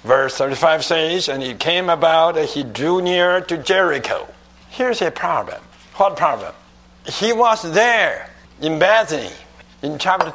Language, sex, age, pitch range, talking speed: English, male, 60-79, 145-205 Hz, 145 wpm